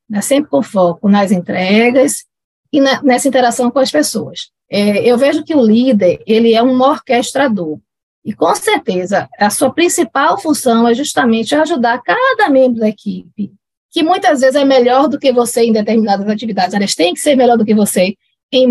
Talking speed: 185 wpm